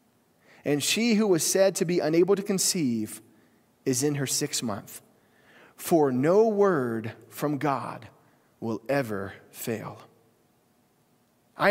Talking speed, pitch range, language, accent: 125 wpm, 135-195 Hz, English, American